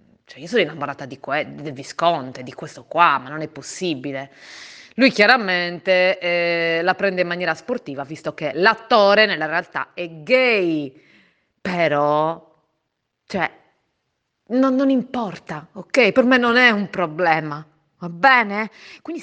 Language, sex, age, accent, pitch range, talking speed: Italian, female, 30-49, native, 160-230 Hz, 135 wpm